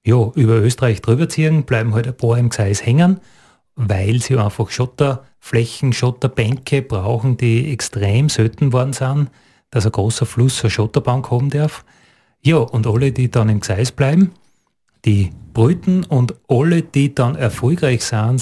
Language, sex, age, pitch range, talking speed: German, male, 30-49, 110-135 Hz, 155 wpm